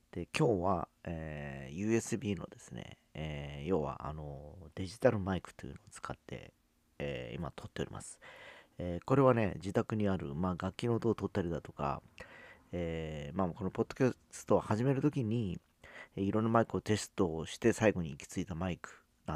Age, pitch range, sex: 40-59, 85-115 Hz, male